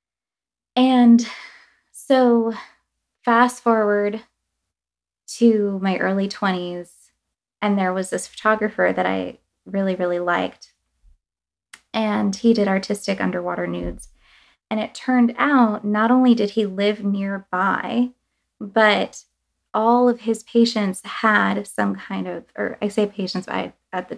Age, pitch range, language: 20-39, 175-225 Hz, English